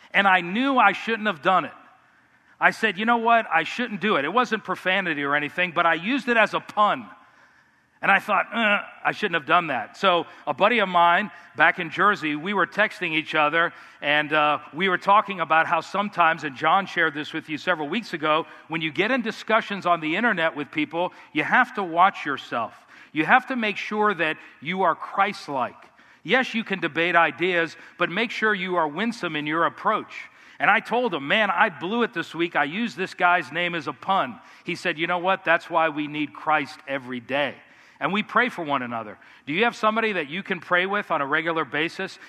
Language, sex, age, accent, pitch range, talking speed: English, male, 50-69, American, 160-210 Hz, 220 wpm